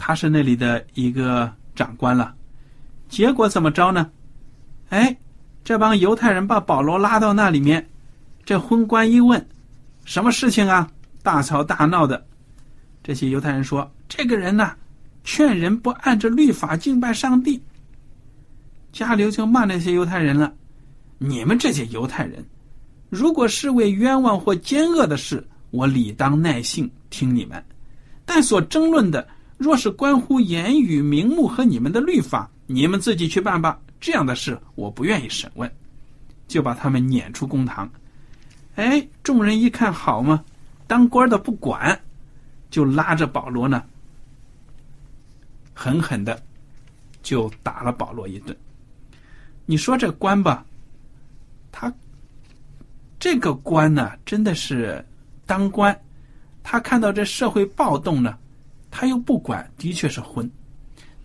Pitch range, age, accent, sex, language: 135-215 Hz, 50-69, native, male, Chinese